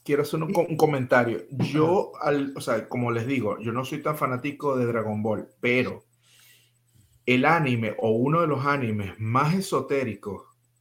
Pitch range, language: 115-145 Hz, Spanish